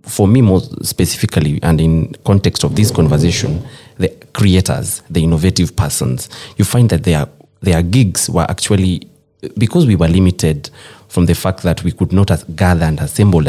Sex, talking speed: male, 165 wpm